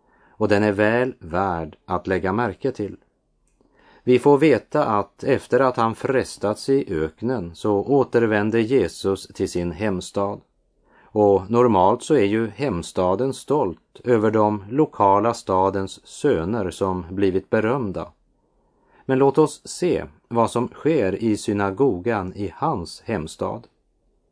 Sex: male